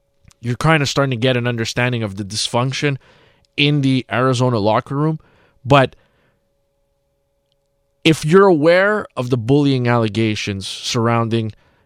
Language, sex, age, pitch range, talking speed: English, male, 20-39, 115-145 Hz, 125 wpm